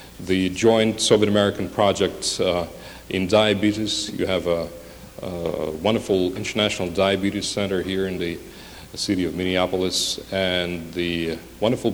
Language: English